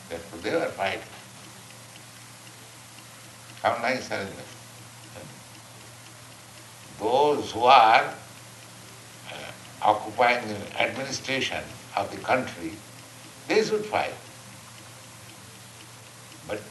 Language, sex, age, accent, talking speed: English, male, 60-79, Indian, 75 wpm